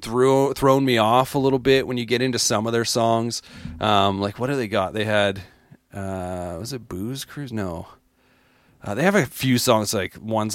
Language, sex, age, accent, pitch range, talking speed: English, male, 30-49, American, 95-125 Hz, 205 wpm